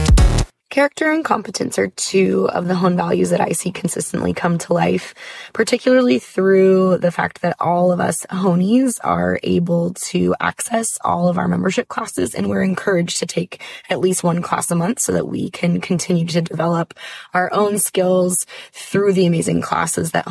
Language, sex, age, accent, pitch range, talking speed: English, female, 20-39, American, 165-190 Hz, 175 wpm